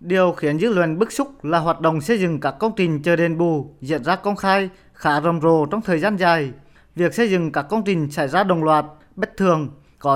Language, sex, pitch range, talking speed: Vietnamese, male, 155-190 Hz, 240 wpm